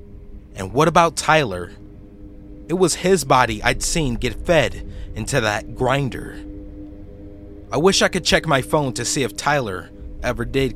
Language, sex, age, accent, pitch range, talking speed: English, male, 30-49, American, 95-125 Hz, 155 wpm